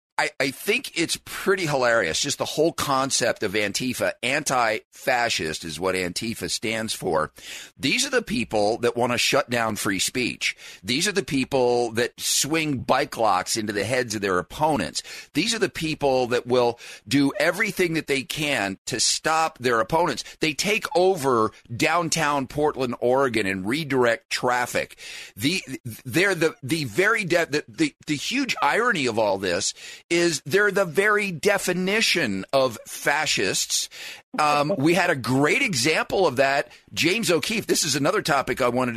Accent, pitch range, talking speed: American, 115-160 Hz, 160 wpm